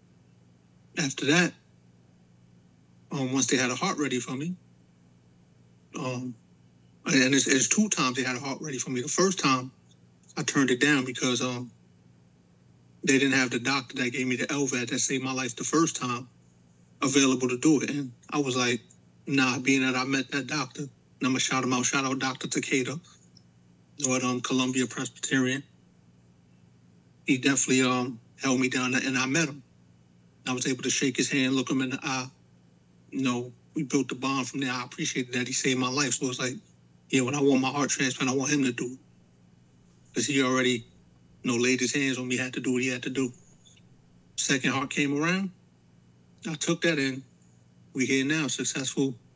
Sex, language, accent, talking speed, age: male, English, American, 200 wpm, 30-49